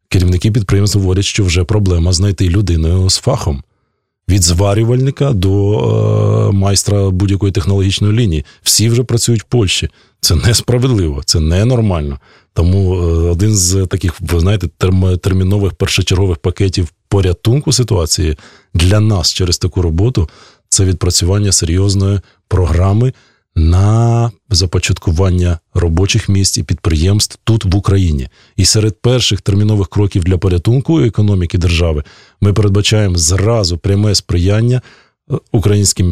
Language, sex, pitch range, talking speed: Russian, male, 90-105 Hz, 120 wpm